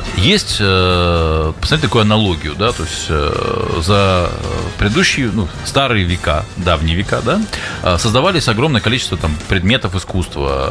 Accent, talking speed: native, 120 wpm